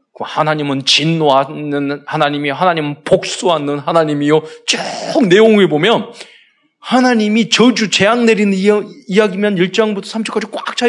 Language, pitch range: Korean, 155-235 Hz